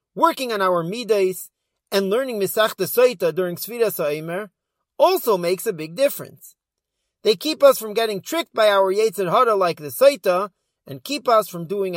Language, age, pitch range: English, 40-59, 180-250 Hz